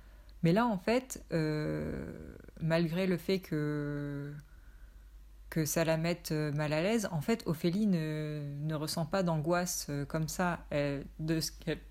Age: 20-39